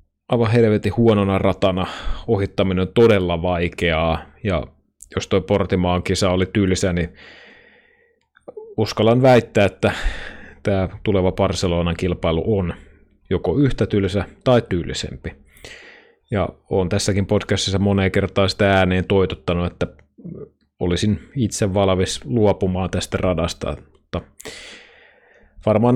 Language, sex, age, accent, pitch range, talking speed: Finnish, male, 30-49, native, 90-105 Hz, 110 wpm